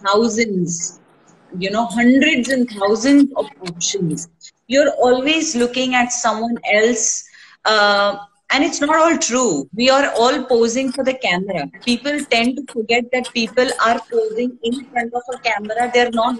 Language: English